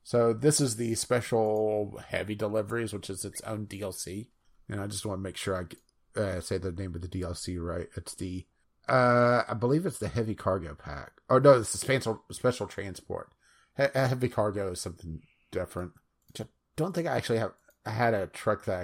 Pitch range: 105-130 Hz